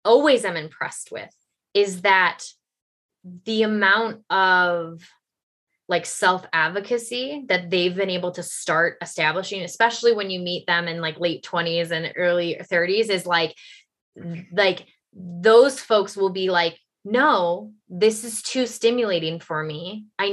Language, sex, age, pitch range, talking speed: English, female, 20-39, 180-250 Hz, 135 wpm